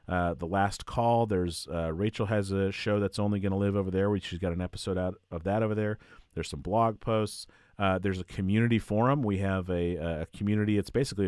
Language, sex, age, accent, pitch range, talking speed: English, male, 30-49, American, 85-110 Hz, 225 wpm